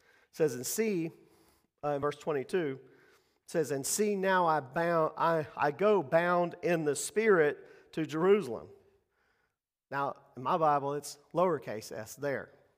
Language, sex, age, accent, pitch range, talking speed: English, male, 40-59, American, 145-190 Hz, 145 wpm